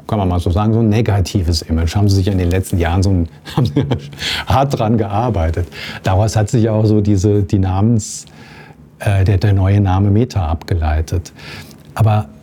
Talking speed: 180 wpm